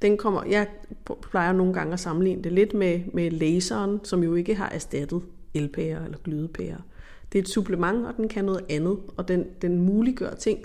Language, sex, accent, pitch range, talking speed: Danish, female, native, 170-200 Hz, 195 wpm